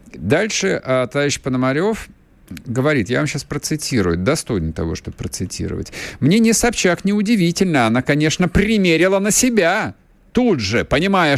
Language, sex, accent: Russian, male, native